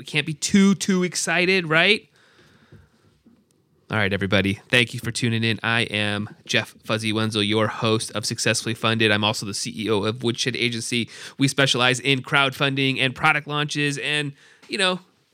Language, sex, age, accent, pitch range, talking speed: English, male, 30-49, American, 115-155 Hz, 165 wpm